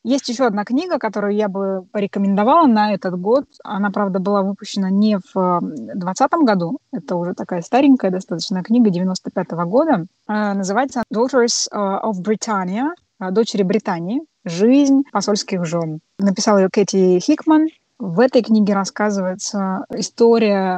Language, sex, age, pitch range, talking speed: Russian, female, 20-39, 190-235 Hz, 135 wpm